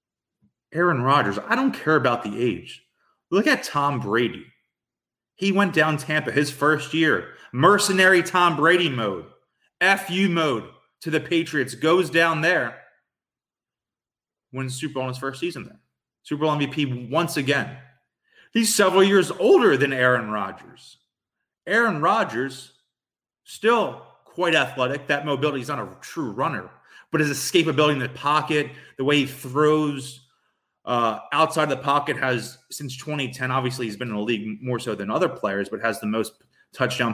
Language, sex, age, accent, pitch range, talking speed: English, male, 30-49, American, 125-155 Hz, 155 wpm